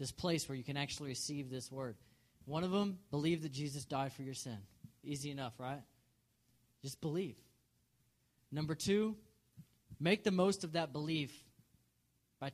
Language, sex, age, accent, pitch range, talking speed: English, male, 20-39, American, 125-155 Hz, 160 wpm